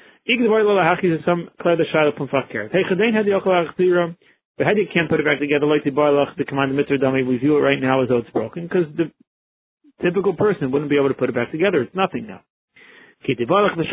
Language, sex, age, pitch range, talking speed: English, male, 30-49, 140-185 Hz, 125 wpm